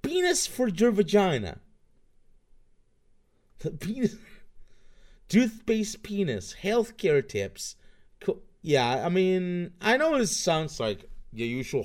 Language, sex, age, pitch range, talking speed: English, male, 30-49, 105-175 Hz, 95 wpm